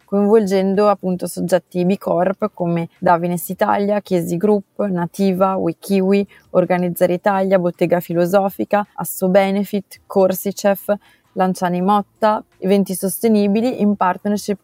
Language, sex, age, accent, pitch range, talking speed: Italian, female, 30-49, native, 175-200 Hz, 100 wpm